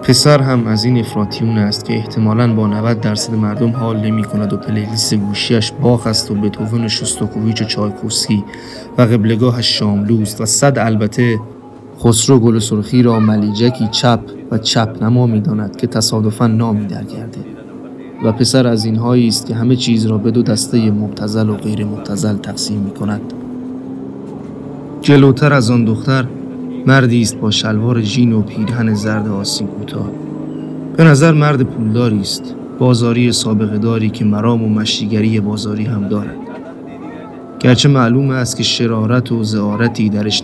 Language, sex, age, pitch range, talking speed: Persian, male, 30-49, 105-125 Hz, 145 wpm